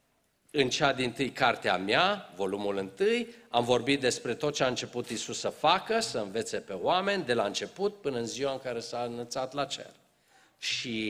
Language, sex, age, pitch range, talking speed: Romanian, male, 50-69, 120-165 Hz, 190 wpm